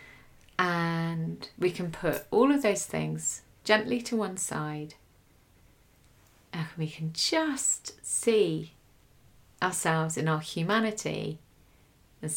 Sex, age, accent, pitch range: female, 30-49, British, 150-165 Hz